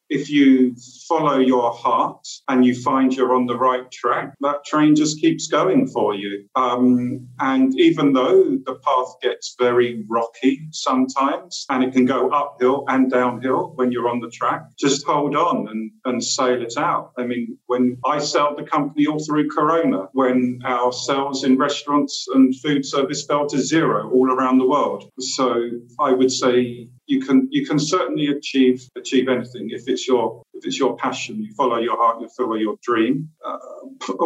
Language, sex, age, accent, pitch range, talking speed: English, male, 50-69, British, 125-145 Hz, 180 wpm